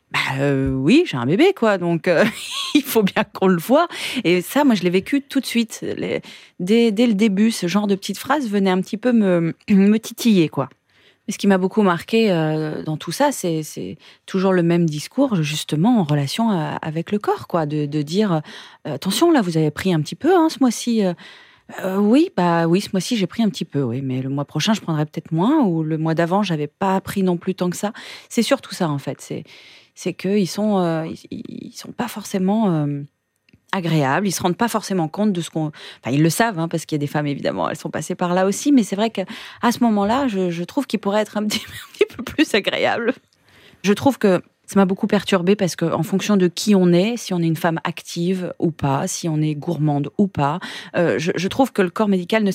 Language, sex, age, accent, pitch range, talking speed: French, female, 30-49, French, 165-220 Hz, 245 wpm